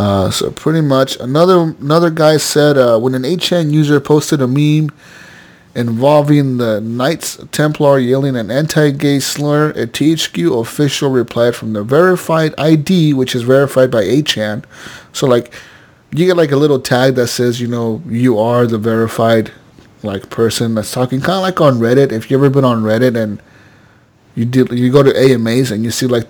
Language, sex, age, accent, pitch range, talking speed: English, male, 30-49, American, 115-145 Hz, 180 wpm